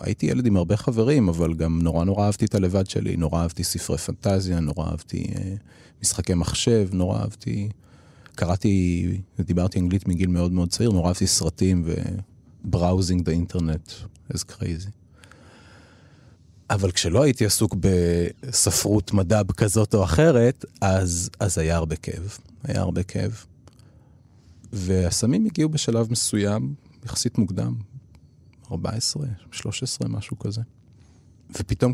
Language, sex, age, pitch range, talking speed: Hebrew, male, 30-49, 85-115 Hz, 120 wpm